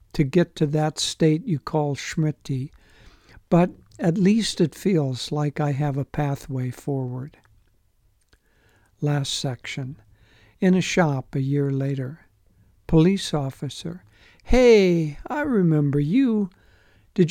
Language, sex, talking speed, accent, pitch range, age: English, male, 120 wpm, American, 135-180 Hz, 60-79